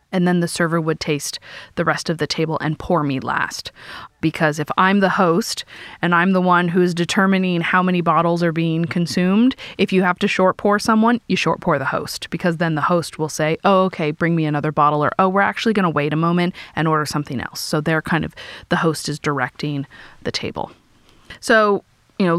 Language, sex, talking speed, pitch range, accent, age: English, female, 225 wpm, 160-205 Hz, American, 30-49